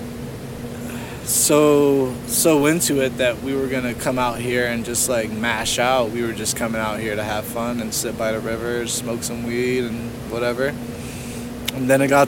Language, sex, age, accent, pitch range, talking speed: English, male, 20-39, American, 120-135 Hz, 190 wpm